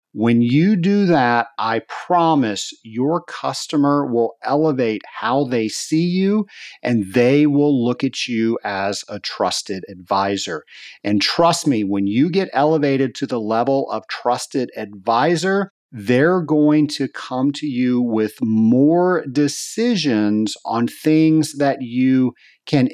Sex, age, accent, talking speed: male, 40-59, American, 135 wpm